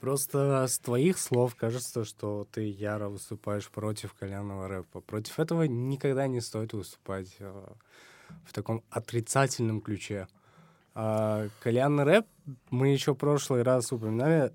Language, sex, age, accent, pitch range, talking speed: Russian, male, 20-39, native, 110-135 Hz, 120 wpm